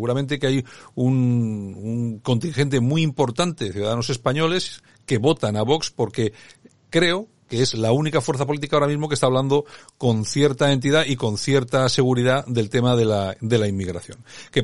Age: 50-69